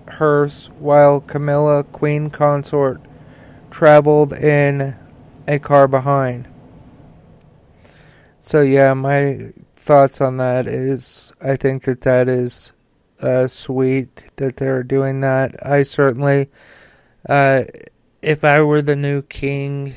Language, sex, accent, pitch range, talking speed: English, male, American, 130-145 Hz, 110 wpm